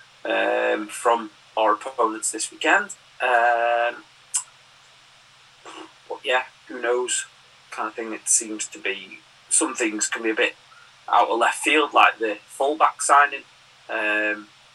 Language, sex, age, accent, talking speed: English, male, 30-49, British, 135 wpm